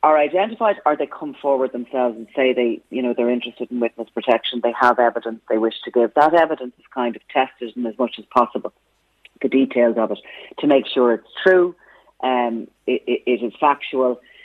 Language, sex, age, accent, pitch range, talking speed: English, female, 30-49, Irish, 120-140 Hz, 205 wpm